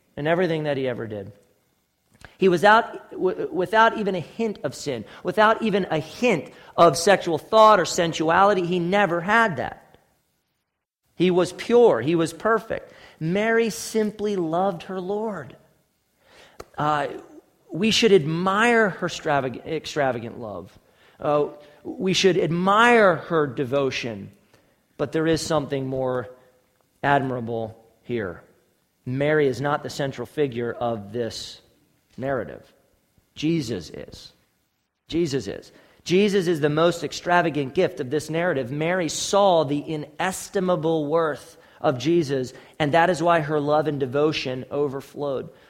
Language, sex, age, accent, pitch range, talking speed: English, male, 40-59, American, 135-190 Hz, 125 wpm